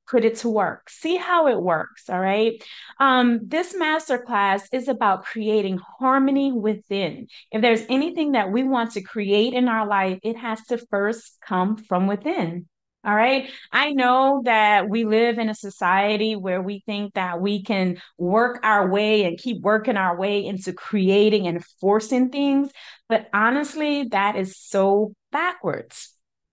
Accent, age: American, 30-49